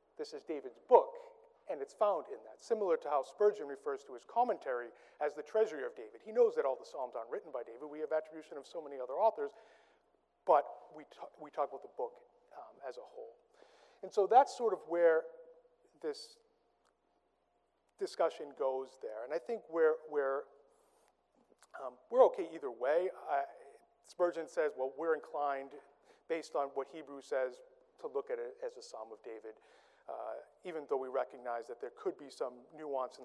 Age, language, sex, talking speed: 30-49, English, male, 190 wpm